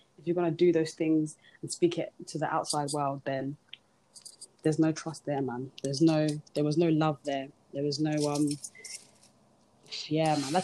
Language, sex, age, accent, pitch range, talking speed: English, female, 20-39, British, 145-175 Hz, 185 wpm